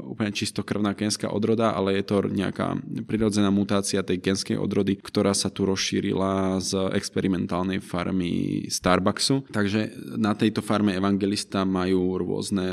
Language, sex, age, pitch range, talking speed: Czech, male, 20-39, 95-105 Hz, 130 wpm